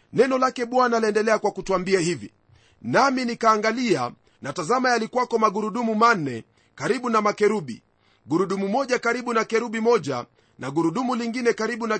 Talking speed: 140 wpm